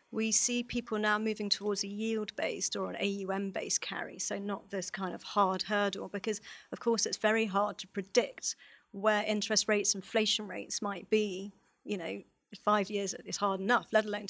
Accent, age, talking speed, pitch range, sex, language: British, 40-59, 180 wpm, 200-230 Hz, female, English